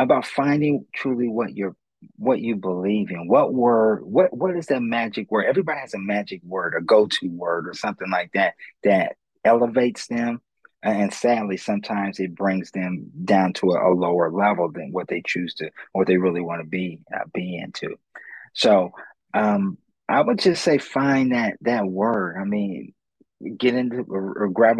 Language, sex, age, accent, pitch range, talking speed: English, male, 30-49, American, 95-125 Hz, 180 wpm